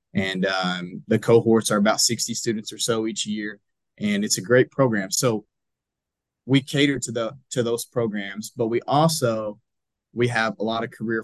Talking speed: 180 wpm